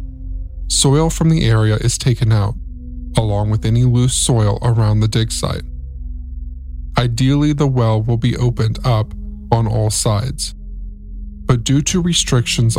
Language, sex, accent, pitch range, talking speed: English, male, American, 85-130 Hz, 140 wpm